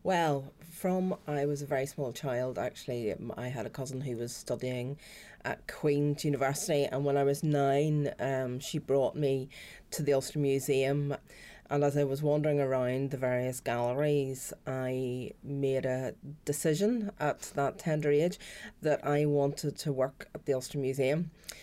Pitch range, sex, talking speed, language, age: 130-150 Hz, female, 160 wpm, English, 30-49